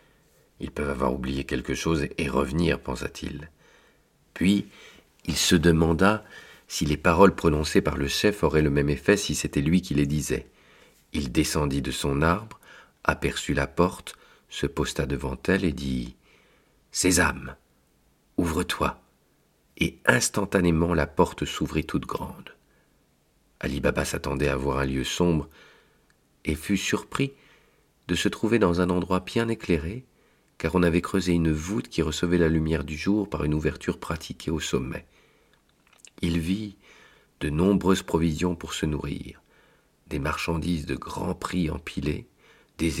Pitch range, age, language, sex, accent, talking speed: 75-90 Hz, 50-69, French, male, French, 150 wpm